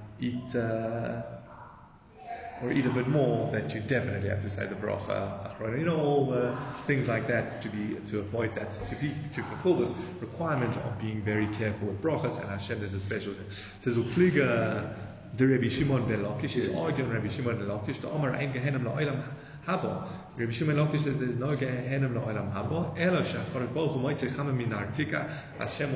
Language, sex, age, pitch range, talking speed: English, male, 30-49, 110-145 Hz, 105 wpm